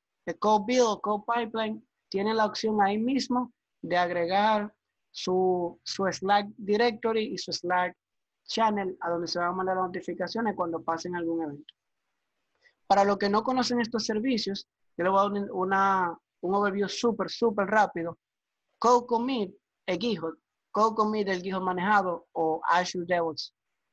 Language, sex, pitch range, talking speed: Spanish, male, 175-215 Hz, 155 wpm